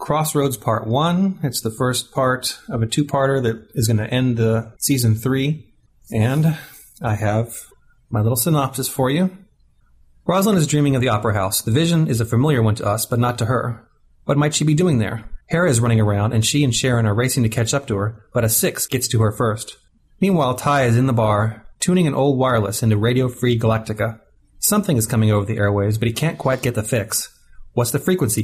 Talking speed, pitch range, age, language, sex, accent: 220 wpm, 110-140 Hz, 30-49, English, male, American